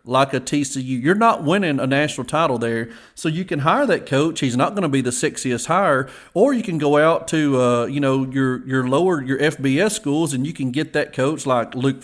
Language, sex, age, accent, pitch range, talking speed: English, male, 40-59, American, 130-180 Hz, 235 wpm